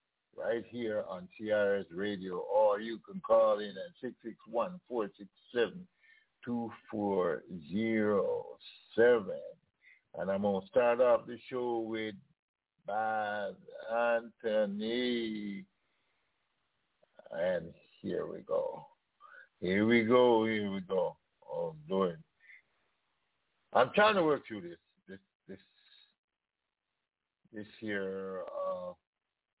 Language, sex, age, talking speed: English, male, 60-79, 95 wpm